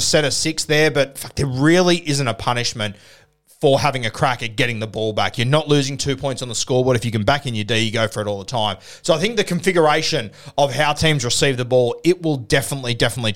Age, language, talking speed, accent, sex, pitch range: 30-49, English, 255 wpm, Australian, male, 120-150 Hz